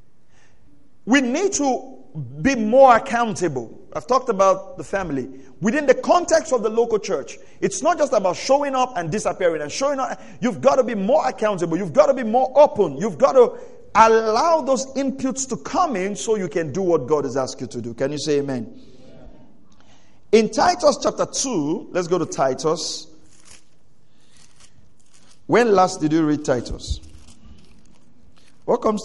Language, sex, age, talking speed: English, male, 50-69, 165 wpm